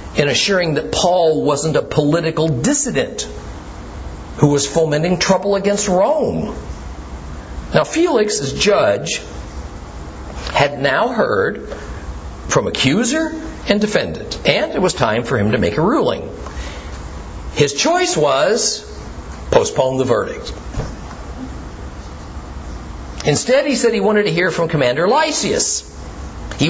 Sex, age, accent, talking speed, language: male, 50-69, American, 115 wpm, English